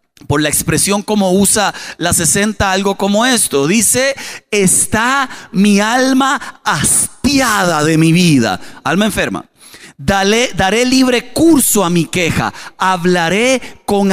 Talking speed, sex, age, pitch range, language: 125 wpm, male, 40-59, 200-265 Hz, Spanish